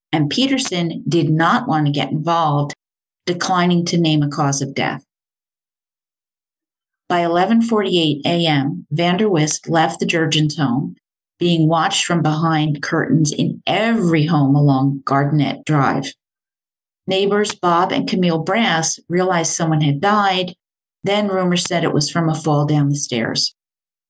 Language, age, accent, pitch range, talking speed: English, 40-59, American, 150-185 Hz, 140 wpm